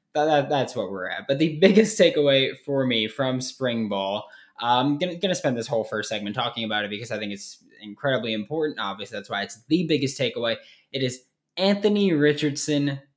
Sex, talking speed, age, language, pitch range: male, 195 wpm, 20-39, English, 115-160 Hz